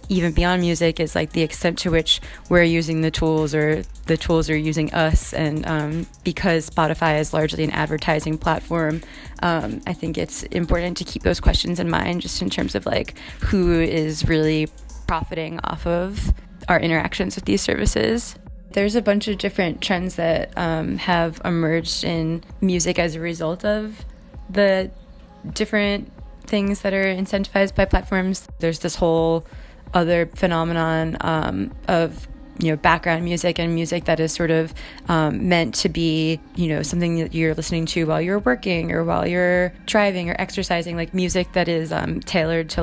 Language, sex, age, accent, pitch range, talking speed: English, female, 20-39, American, 160-180 Hz, 170 wpm